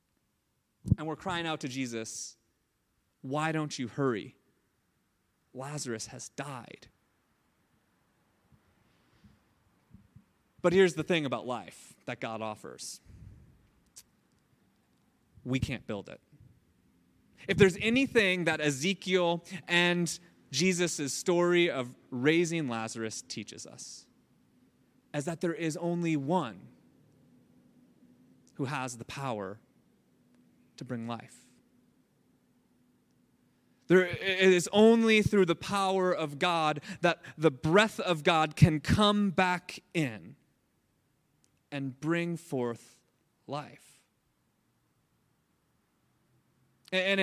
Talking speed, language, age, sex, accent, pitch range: 95 wpm, English, 30-49, male, American, 135-185 Hz